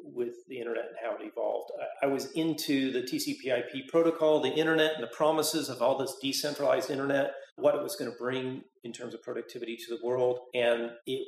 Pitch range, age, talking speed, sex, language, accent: 120-160 Hz, 40-59, 200 wpm, male, English, American